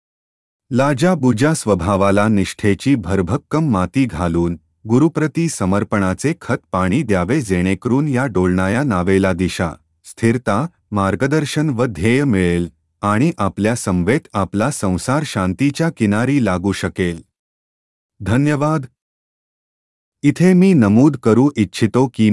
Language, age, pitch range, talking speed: Marathi, 30-49, 95-135 Hz, 100 wpm